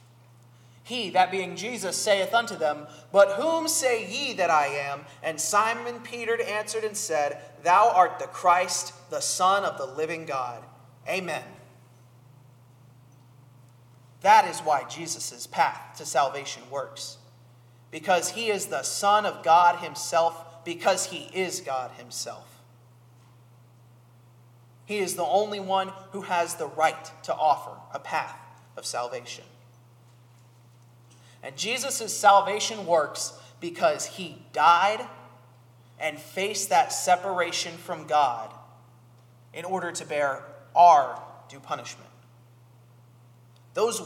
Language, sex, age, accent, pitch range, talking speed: English, male, 30-49, American, 120-185 Hz, 120 wpm